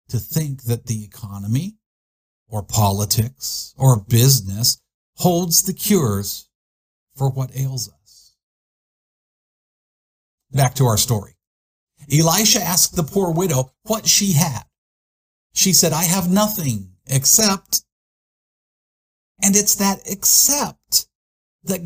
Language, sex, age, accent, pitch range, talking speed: English, male, 50-69, American, 115-190 Hz, 105 wpm